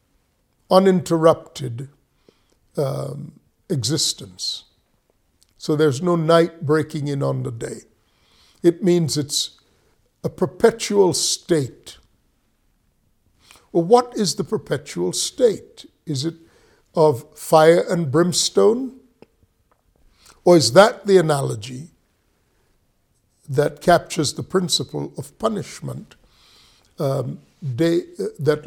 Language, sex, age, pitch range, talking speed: English, male, 60-79, 145-185 Hz, 90 wpm